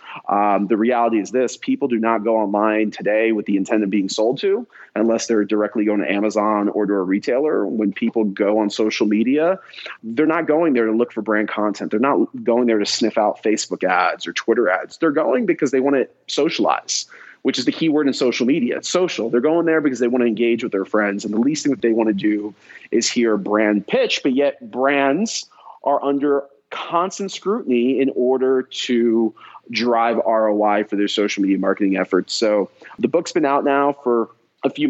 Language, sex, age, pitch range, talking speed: English, male, 30-49, 110-140 Hz, 210 wpm